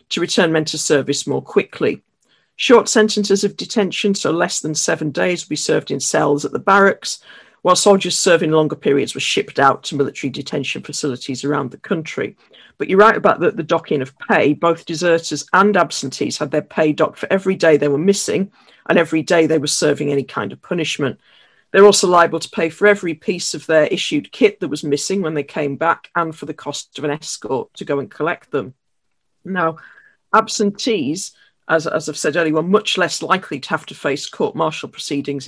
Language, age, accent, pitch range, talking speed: English, 50-69, British, 145-190 Hz, 200 wpm